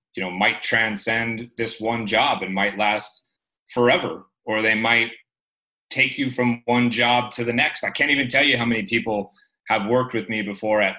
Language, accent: English, American